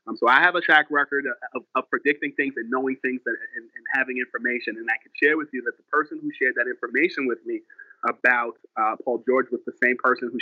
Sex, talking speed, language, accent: male, 240 wpm, English, American